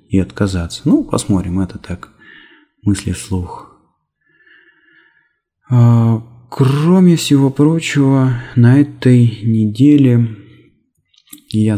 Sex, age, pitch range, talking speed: male, 20-39, 95-125 Hz, 75 wpm